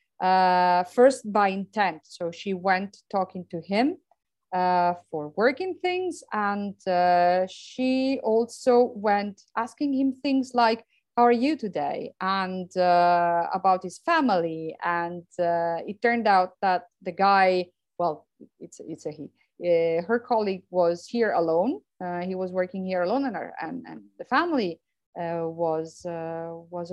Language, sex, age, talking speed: English, female, 30-49, 145 wpm